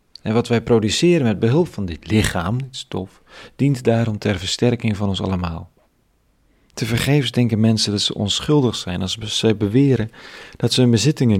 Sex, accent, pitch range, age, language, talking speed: male, Dutch, 95-115 Hz, 40-59, Dutch, 175 wpm